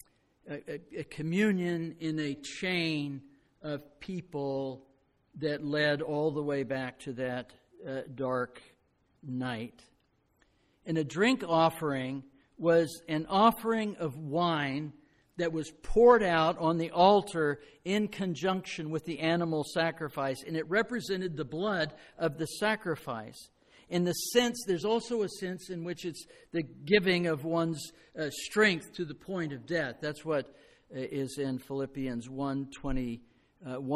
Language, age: English, 60-79